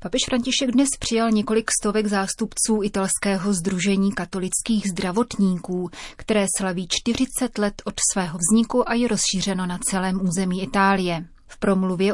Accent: native